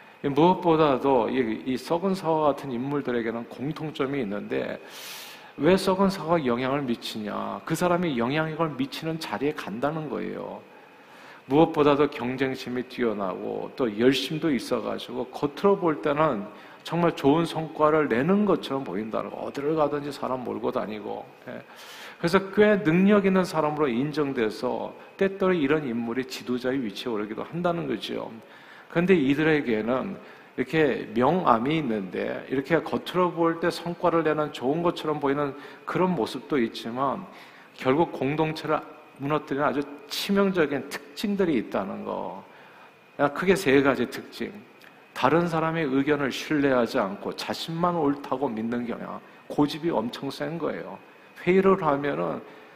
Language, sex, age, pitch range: Korean, male, 50-69, 135-170 Hz